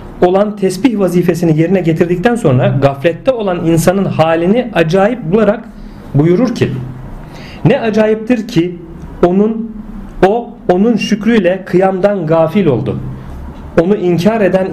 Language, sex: Turkish, male